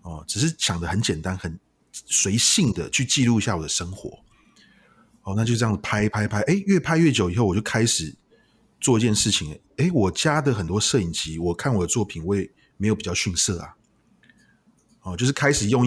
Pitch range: 95-125 Hz